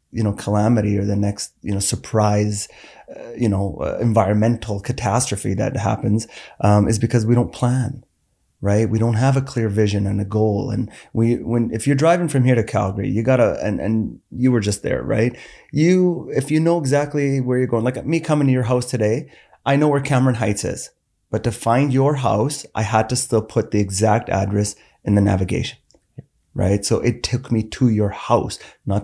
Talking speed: 205 wpm